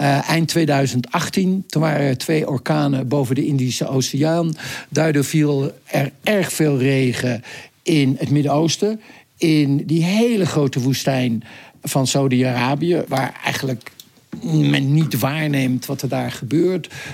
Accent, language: Dutch, Dutch